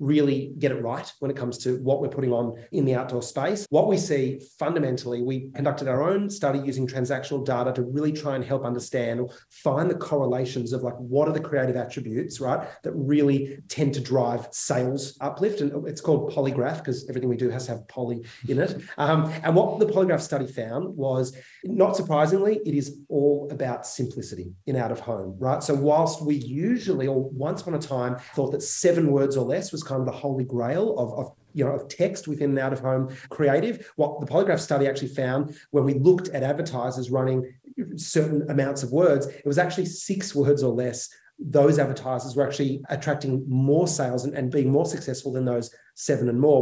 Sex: male